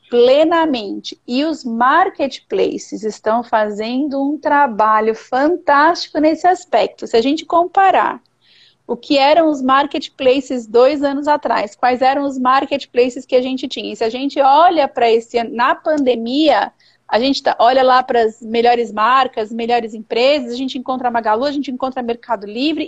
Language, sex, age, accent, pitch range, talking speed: Portuguese, female, 40-59, Brazilian, 245-310 Hz, 165 wpm